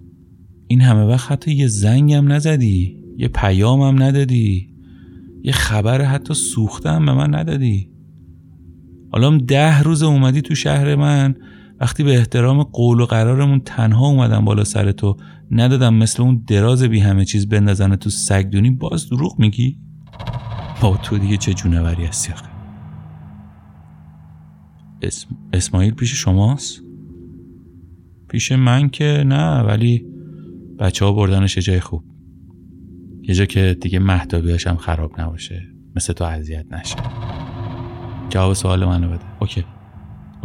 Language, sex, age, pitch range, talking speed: Persian, male, 30-49, 90-135 Hz, 130 wpm